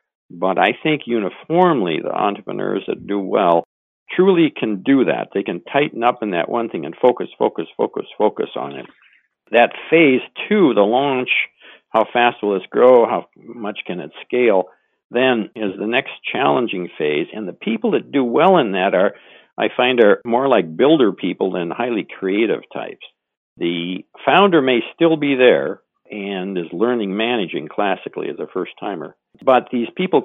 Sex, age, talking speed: male, 60-79, 175 wpm